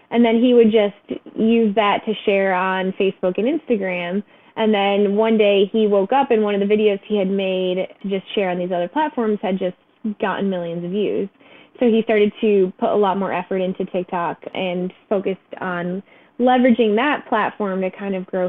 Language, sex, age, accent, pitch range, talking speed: English, female, 20-39, American, 190-230 Hz, 200 wpm